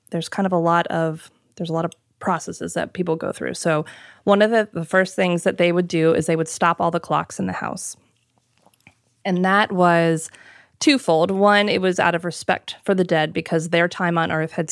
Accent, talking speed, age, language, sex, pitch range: American, 225 wpm, 20-39, English, female, 160-180 Hz